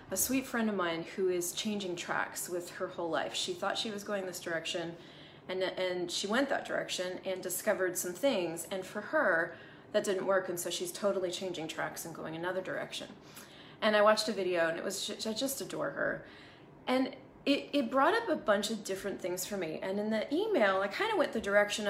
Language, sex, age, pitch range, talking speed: English, female, 20-39, 180-235 Hz, 220 wpm